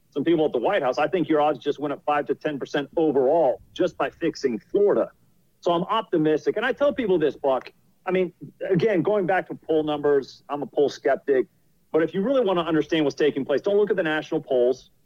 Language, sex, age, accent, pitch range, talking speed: English, male, 40-59, American, 150-190 Hz, 230 wpm